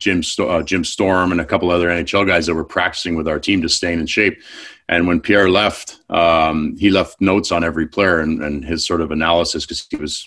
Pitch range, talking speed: 85-100 Hz, 220 wpm